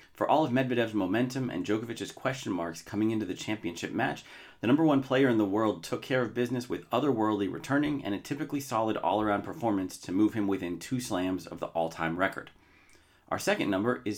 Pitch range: 95-115 Hz